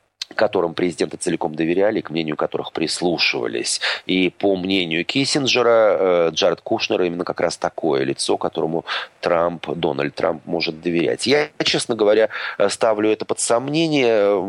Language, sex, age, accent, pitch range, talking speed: Russian, male, 30-49, native, 90-120 Hz, 135 wpm